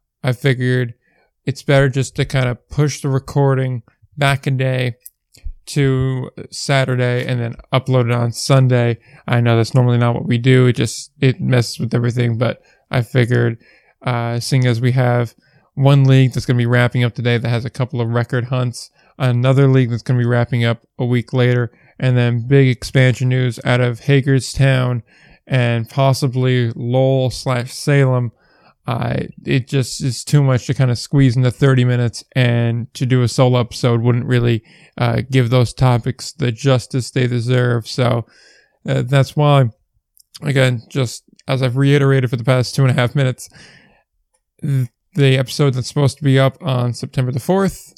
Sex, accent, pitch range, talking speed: male, American, 120-135 Hz, 175 wpm